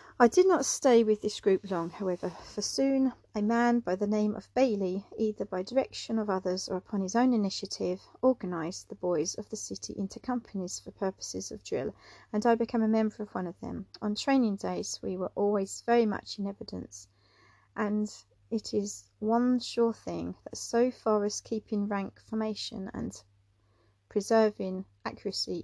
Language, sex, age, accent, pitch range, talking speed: English, female, 40-59, British, 190-225 Hz, 175 wpm